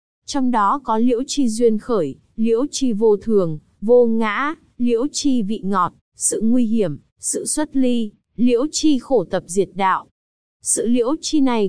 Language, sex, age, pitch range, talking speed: Vietnamese, female, 20-39, 200-255 Hz, 170 wpm